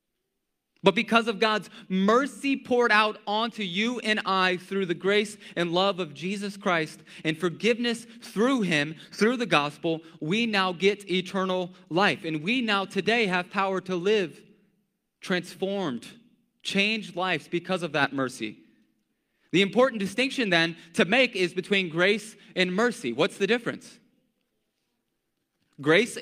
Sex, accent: male, American